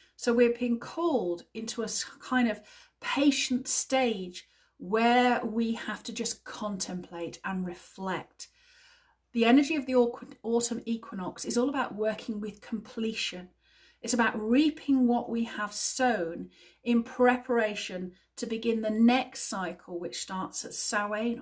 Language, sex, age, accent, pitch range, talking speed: English, female, 40-59, British, 200-255 Hz, 135 wpm